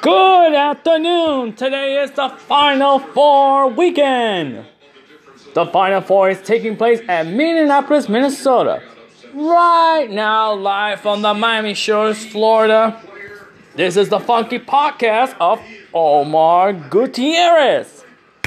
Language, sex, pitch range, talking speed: English, male, 185-245 Hz, 105 wpm